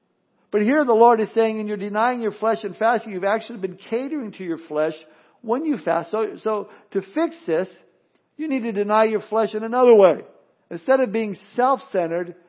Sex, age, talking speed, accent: male, 50-69, 195 wpm, American